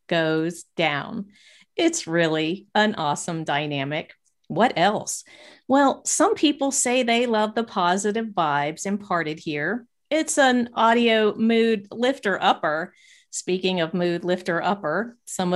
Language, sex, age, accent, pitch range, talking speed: English, female, 50-69, American, 165-235 Hz, 125 wpm